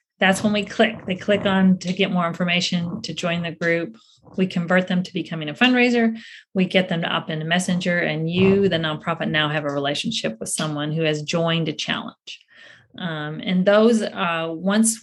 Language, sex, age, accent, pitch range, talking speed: English, female, 30-49, American, 165-210 Hz, 200 wpm